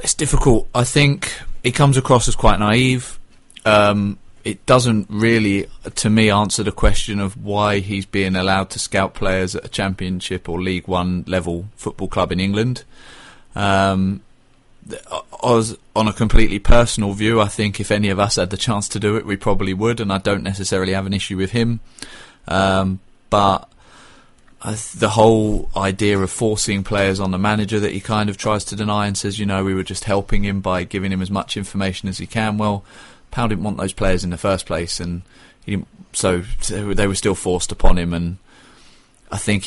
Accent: British